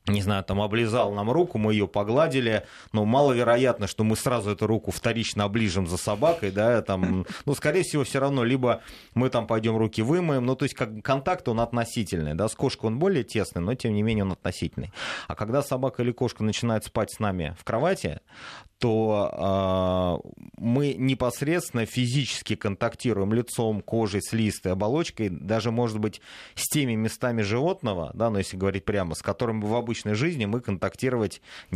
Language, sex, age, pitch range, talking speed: Russian, male, 30-49, 100-120 Hz, 180 wpm